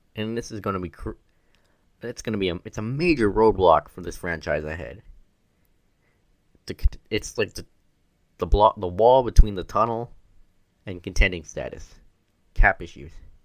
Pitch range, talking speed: 85-105 Hz, 150 wpm